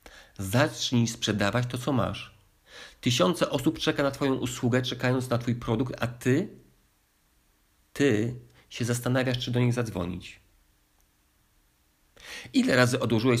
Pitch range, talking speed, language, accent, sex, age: 100-120 Hz, 120 wpm, Polish, native, male, 50-69